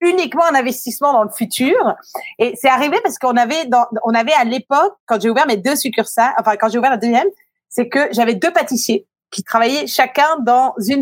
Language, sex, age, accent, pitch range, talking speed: French, female, 30-49, French, 230-300 Hz, 210 wpm